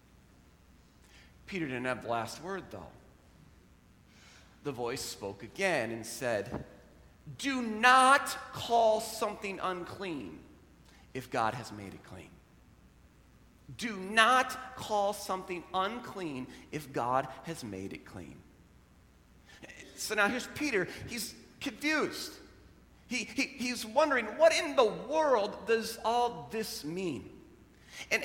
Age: 40-59